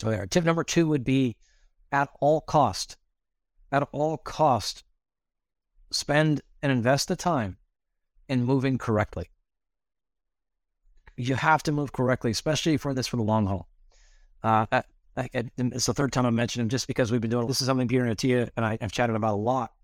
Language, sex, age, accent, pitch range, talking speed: English, male, 30-49, American, 120-150 Hz, 175 wpm